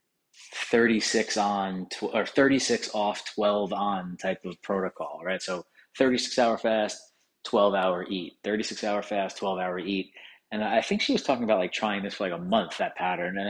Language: English